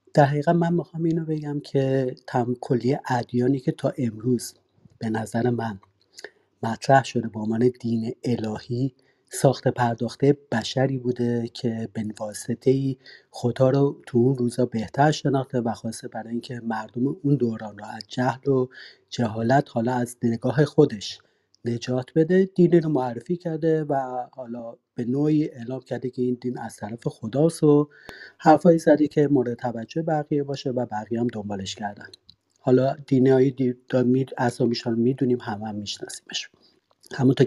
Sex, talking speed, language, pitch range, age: male, 145 wpm, Persian, 115-140 Hz, 40-59